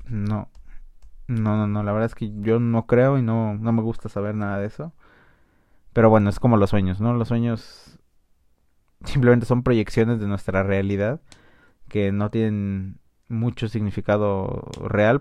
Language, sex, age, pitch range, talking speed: Spanish, male, 20-39, 100-120 Hz, 160 wpm